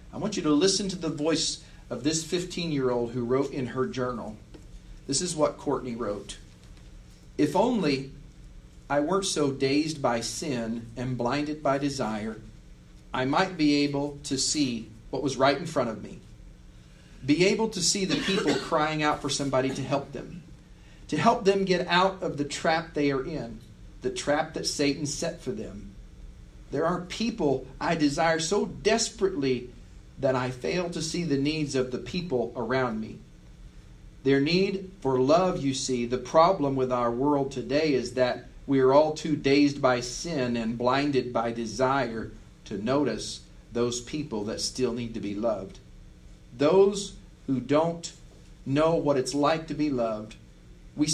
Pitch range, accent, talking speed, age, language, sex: 120-160 Hz, American, 165 wpm, 40-59, English, male